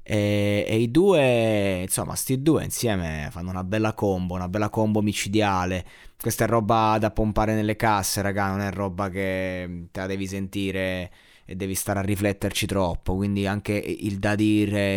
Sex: male